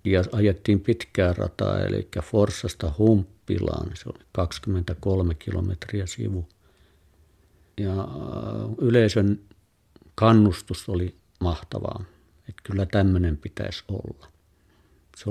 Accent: native